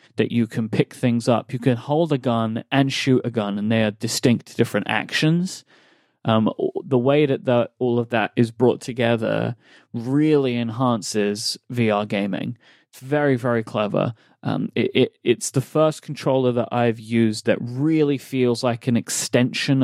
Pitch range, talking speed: 115-135 Hz, 160 wpm